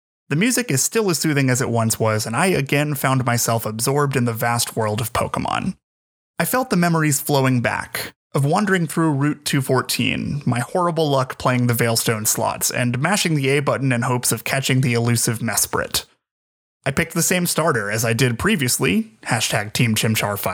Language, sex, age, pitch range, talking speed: English, male, 20-39, 120-160 Hz, 185 wpm